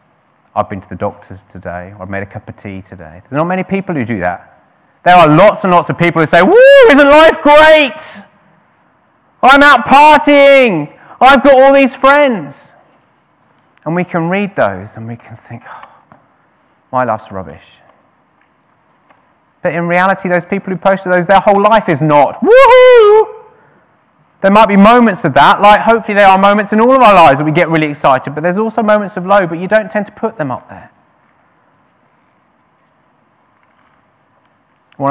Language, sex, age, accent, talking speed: English, male, 30-49, British, 185 wpm